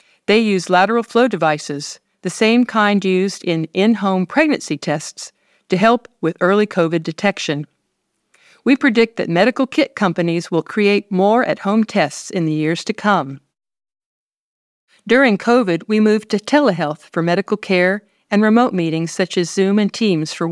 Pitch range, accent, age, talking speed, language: 170-215 Hz, American, 50-69, 160 wpm, English